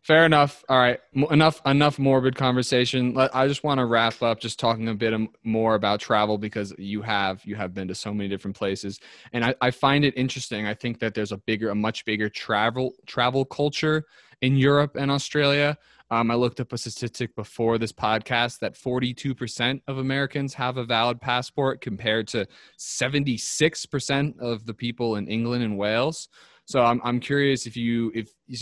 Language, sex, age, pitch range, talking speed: English, male, 20-39, 105-130 Hz, 185 wpm